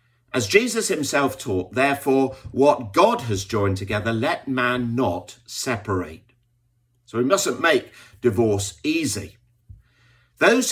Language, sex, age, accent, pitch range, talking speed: English, male, 50-69, British, 100-130 Hz, 120 wpm